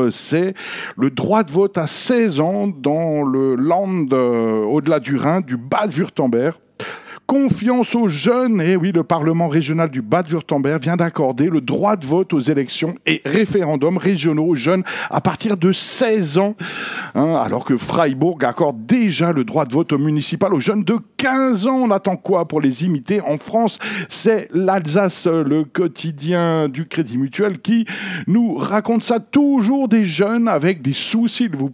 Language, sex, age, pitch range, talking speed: French, male, 60-79, 150-215 Hz, 170 wpm